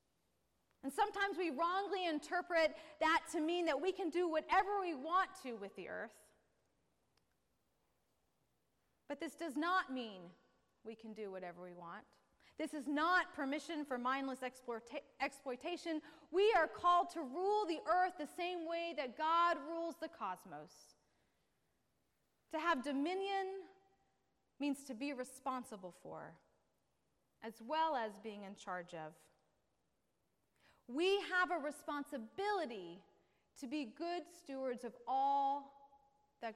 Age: 30-49